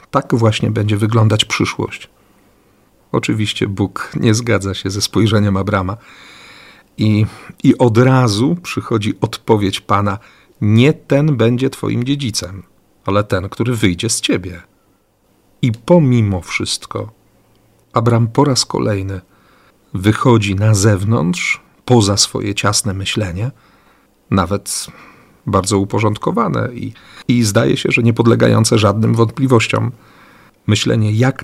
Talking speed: 115 wpm